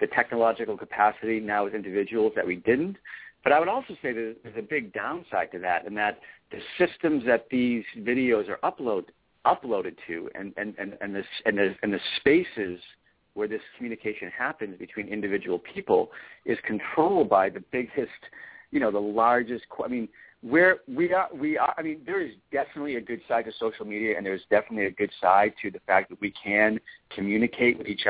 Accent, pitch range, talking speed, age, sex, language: American, 105-155 Hz, 190 wpm, 50-69, male, English